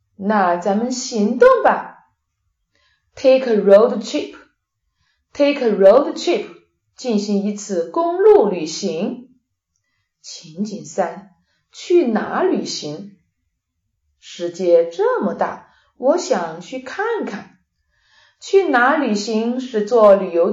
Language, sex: Chinese, female